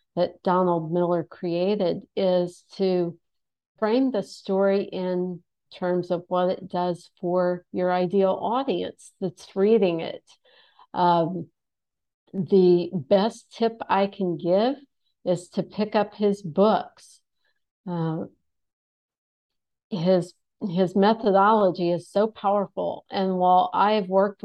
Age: 50-69